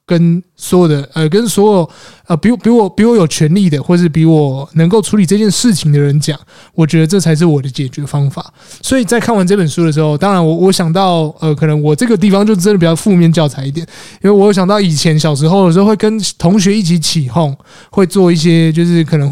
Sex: male